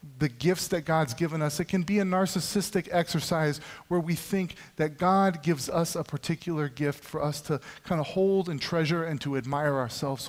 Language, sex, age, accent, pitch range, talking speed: English, male, 40-59, American, 150-195 Hz, 200 wpm